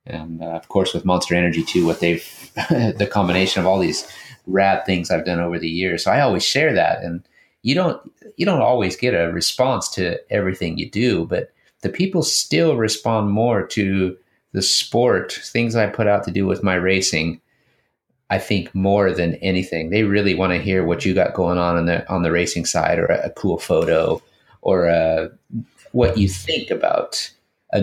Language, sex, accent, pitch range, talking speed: English, male, American, 90-110 Hz, 195 wpm